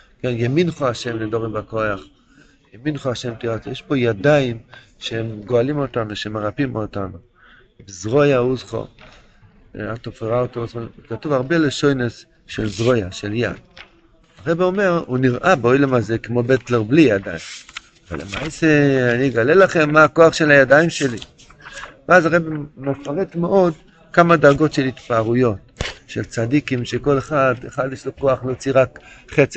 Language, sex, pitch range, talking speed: Hebrew, male, 120-145 Hz, 140 wpm